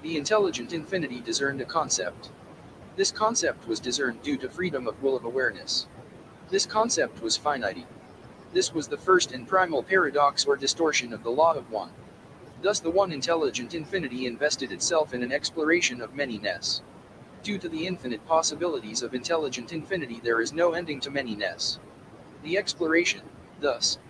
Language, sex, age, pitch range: English, male, 30-49, 130-180 Hz